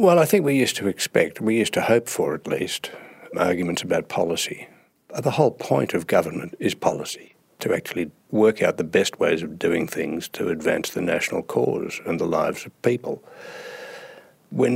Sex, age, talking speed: male, 60-79, 185 wpm